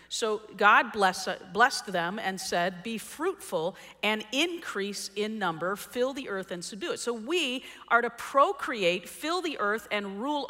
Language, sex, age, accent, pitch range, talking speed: English, female, 40-59, American, 185-255 Hz, 165 wpm